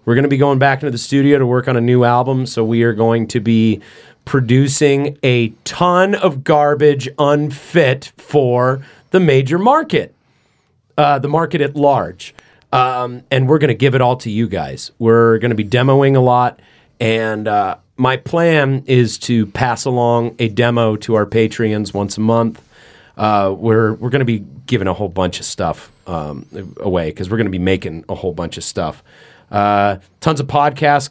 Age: 30-49